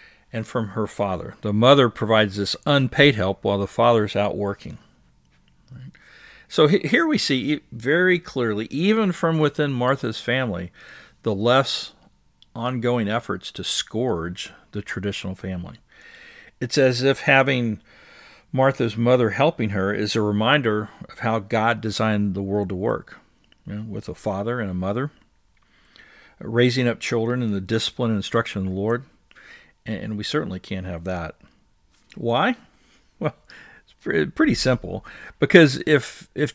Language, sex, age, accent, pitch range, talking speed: English, male, 50-69, American, 100-130 Hz, 140 wpm